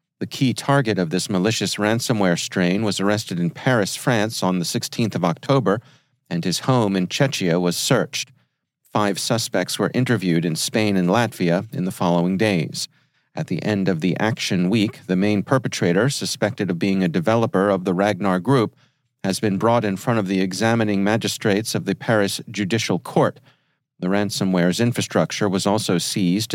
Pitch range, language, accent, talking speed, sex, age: 95-130 Hz, English, American, 170 wpm, male, 40-59